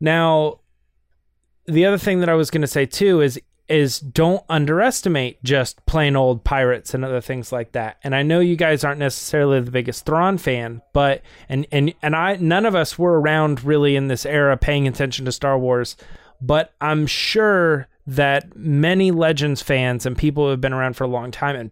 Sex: male